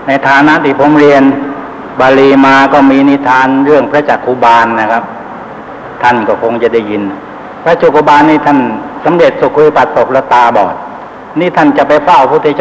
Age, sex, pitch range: 60-79, male, 140-175 Hz